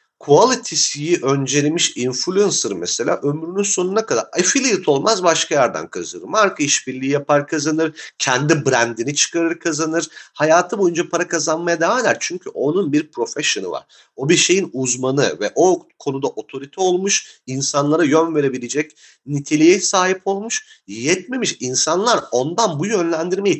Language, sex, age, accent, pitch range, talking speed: Turkish, male, 40-59, native, 150-195 Hz, 130 wpm